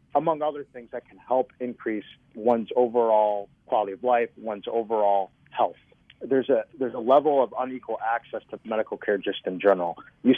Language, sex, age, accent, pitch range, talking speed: English, male, 30-49, American, 105-125 Hz, 170 wpm